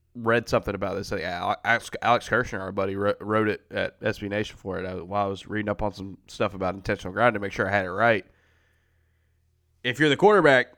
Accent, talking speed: American, 215 wpm